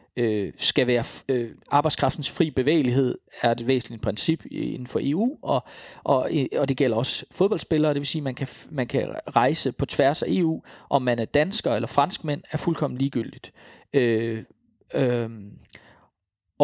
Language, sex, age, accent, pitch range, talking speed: English, male, 40-59, Danish, 120-160 Hz, 155 wpm